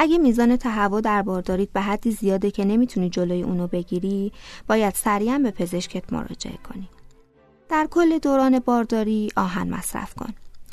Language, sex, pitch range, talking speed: Persian, female, 190-240 Hz, 145 wpm